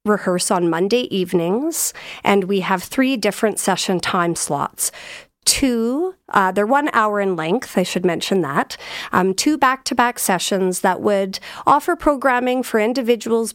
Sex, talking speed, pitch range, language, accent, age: female, 155 wpm, 185-235 Hz, English, American, 40-59